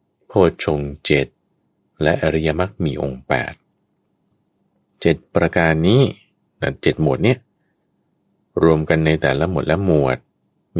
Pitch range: 75-100 Hz